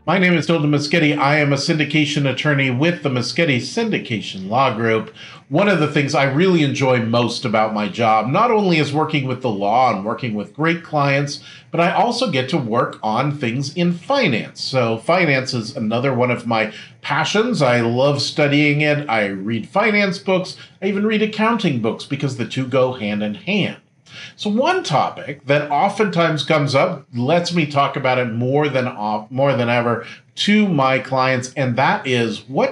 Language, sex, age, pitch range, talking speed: English, male, 40-59, 125-170 Hz, 185 wpm